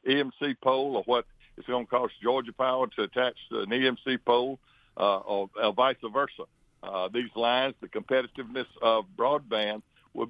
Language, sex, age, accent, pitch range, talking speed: English, male, 60-79, American, 115-130 Hz, 165 wpm